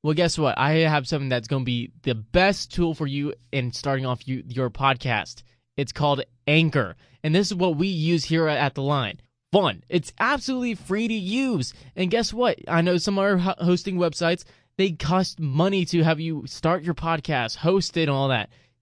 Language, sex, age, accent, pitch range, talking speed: English, male, 20-39, American, 135-190 Hz, 205 wpm